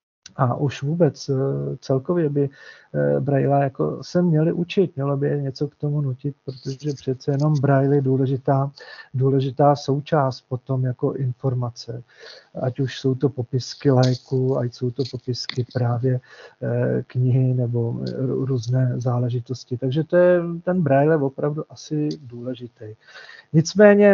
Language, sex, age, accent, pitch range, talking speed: Czech, male, 40-59, native, 130-160 Hz, 125 wpm